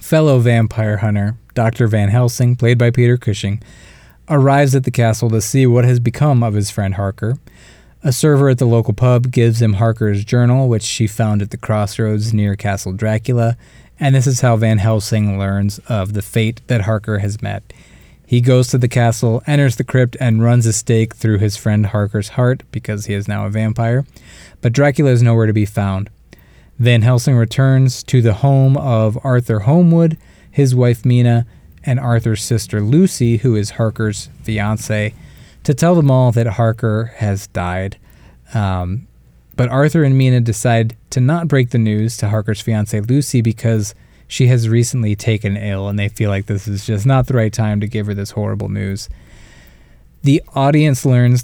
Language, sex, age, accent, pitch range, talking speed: English, male, 20-39, American, 105-125 Hz, 180 wpm